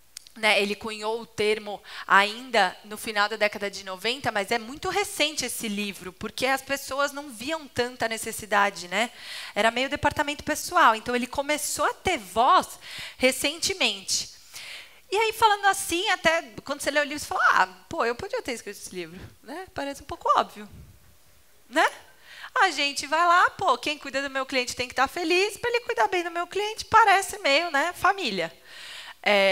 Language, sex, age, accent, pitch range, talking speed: Portuguese, female, 20-39, Brazilian, 215-320 Hz, 180 wpm